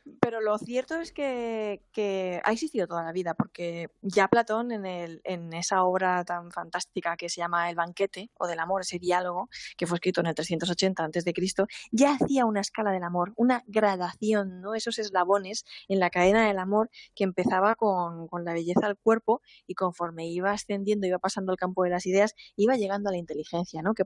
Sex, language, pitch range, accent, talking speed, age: female, Spanish, 180-220 Hz, Spanish, 200 wpm, 20-39